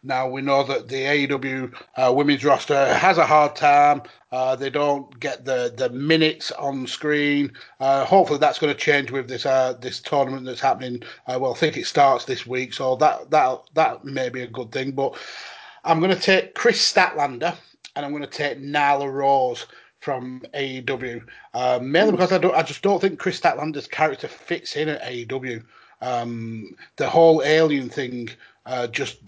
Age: 30-49